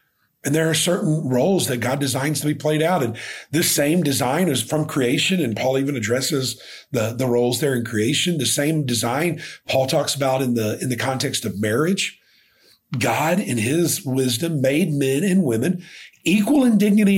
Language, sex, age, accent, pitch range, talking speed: English, male, 50-69, American, 135-190 Hz, 185 wpm